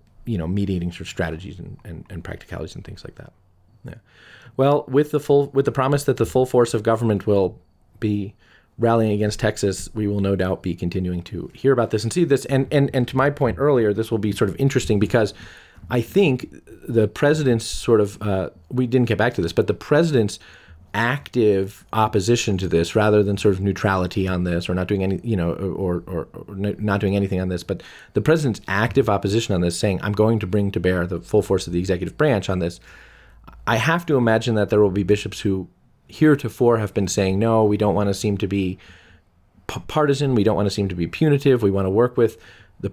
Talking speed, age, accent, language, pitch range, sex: 225 wpm, 30-49, American, English, 95-120 Hz, male